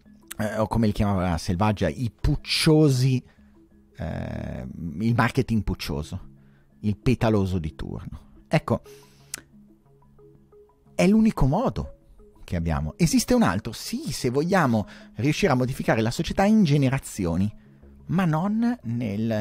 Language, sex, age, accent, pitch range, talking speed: Italian, male, 30-49, native, 85-135 Hz, 120 wpm